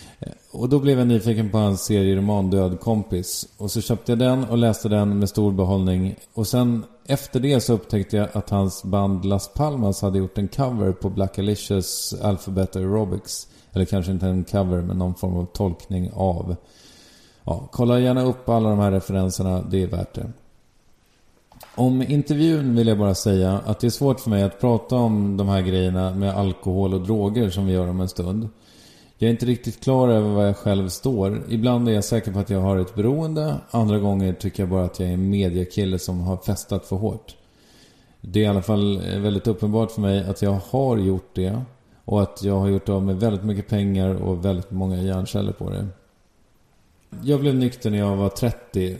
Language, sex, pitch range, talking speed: English, male, 95-115 Hz, 200 wpm